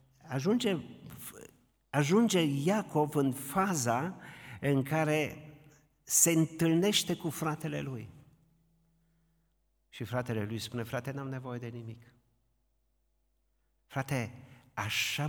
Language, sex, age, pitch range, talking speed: Romanian, male, 50-69, 115-150 Hz, 90 wpm